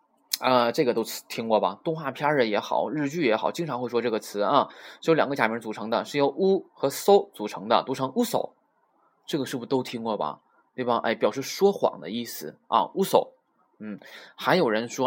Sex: male